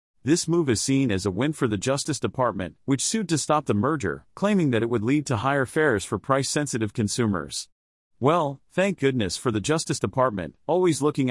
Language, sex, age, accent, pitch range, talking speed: English, male, 40-59, American, 110-150 Hz, 195 wpm